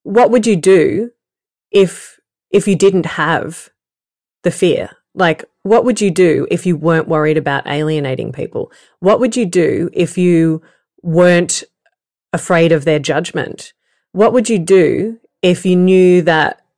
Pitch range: 165-210 Hz